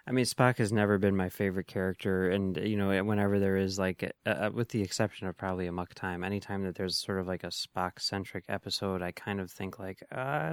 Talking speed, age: 235 wpm, 20-39